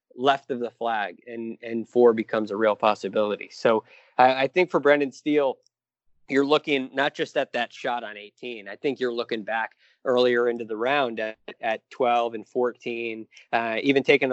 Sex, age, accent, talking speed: male, 20-39, American, 185 wpm